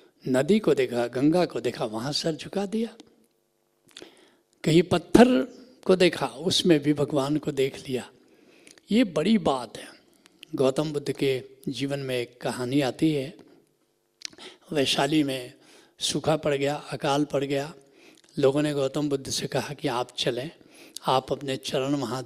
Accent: native